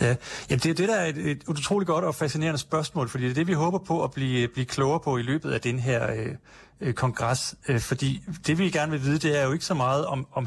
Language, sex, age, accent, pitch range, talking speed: Danish, male, 30-49, native, 125-160 Hz, 280 wpm